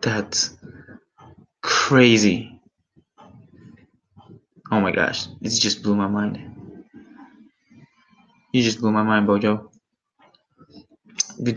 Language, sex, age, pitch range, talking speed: English, male, 20-39, 105-130 Hz, 90 wpm